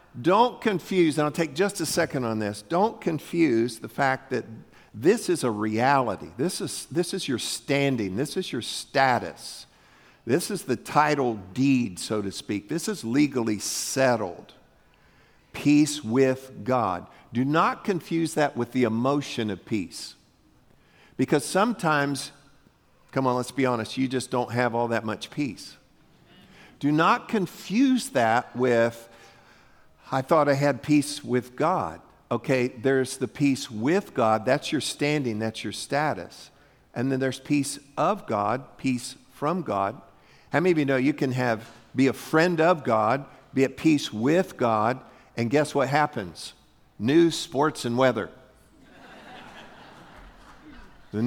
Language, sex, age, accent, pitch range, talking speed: English, male, 50-69, American, 120-155 Hz, 150 wpm